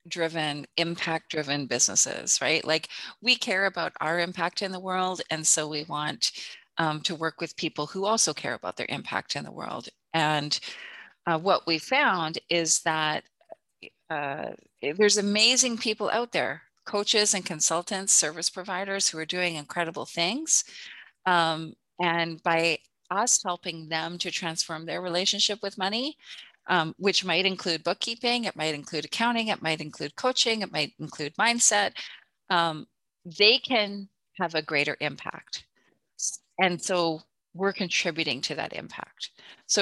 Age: 30-49